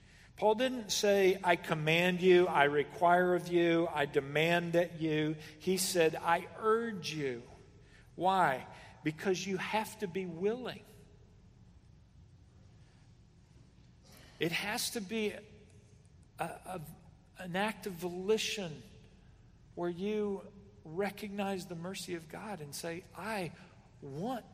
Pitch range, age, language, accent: 145-190 Hz, 50-69, English, American